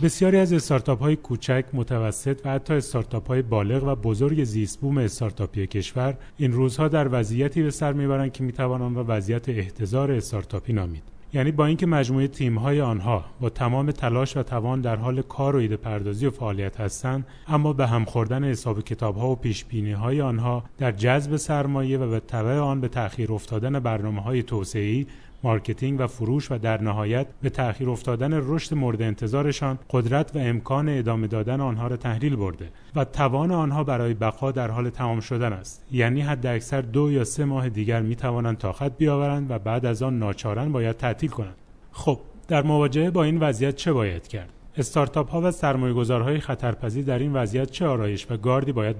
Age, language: 30-49, Persian